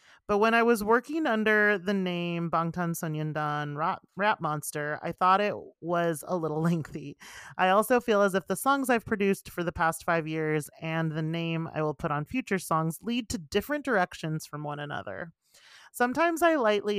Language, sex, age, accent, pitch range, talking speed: English, male, 30-49, American, 150-195 Hz, 185 wpm